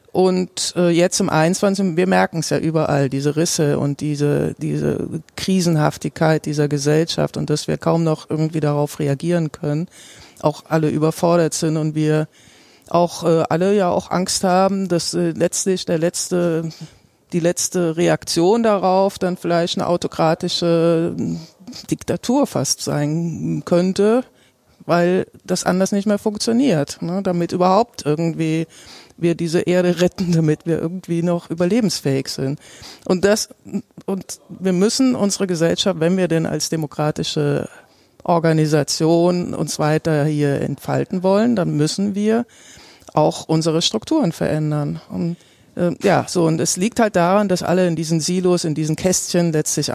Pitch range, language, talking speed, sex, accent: 155-185 Hz, German, 140 wpm, female, German